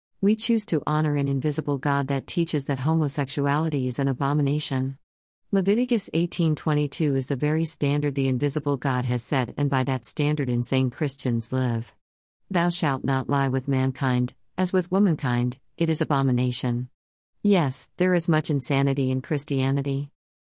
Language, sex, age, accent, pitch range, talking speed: English, female, 50-69, American, 130-155 Hz, 155 wpm